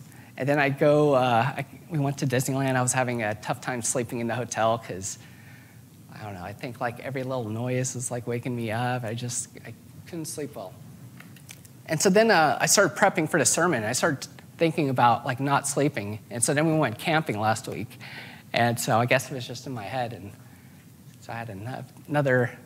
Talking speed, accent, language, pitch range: 210 wpm, American, English, 120-155 Hz